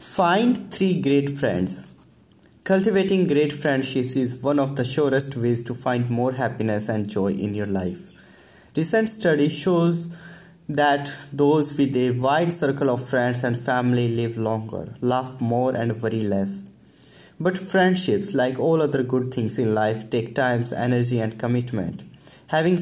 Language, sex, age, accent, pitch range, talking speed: English, male, 20-39, Indian, 120-150 Hz, 150 wpm